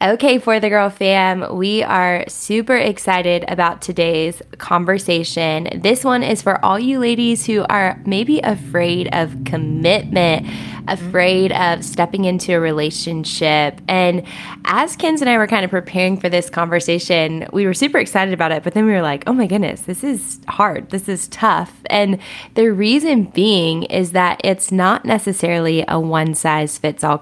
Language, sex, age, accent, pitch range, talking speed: English, female, 10-29, American, 160-205 Hz, 165 wpm